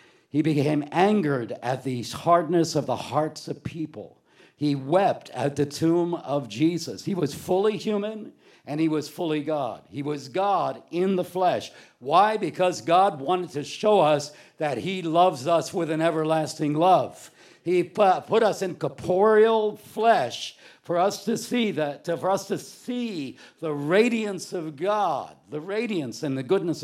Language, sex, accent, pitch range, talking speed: English, male, American, 150-190 Hz, 160 wpm